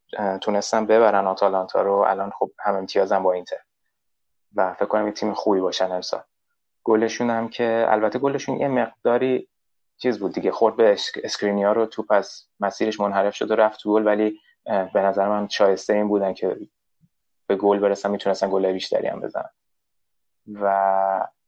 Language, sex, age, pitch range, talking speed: Persian, male, 20-39, 100-110 Hz, 160 wpm